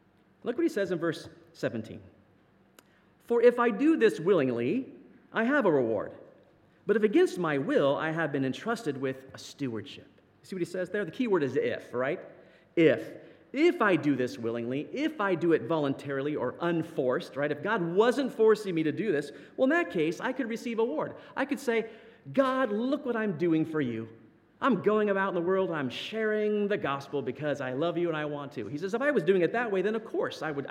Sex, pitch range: male, 140-220 Hz